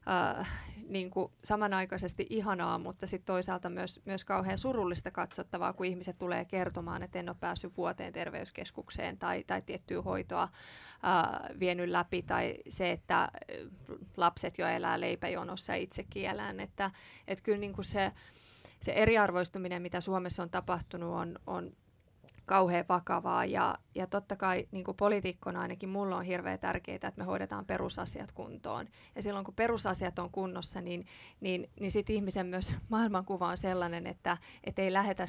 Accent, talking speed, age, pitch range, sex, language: native, 150 wpm, 20-39, 180-195 Hz, female, Finnish